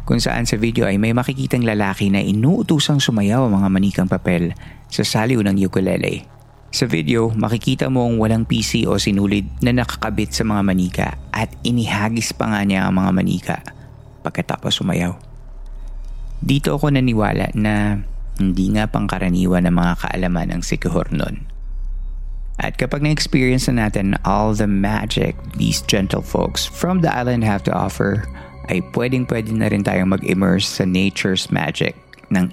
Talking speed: 150 wpm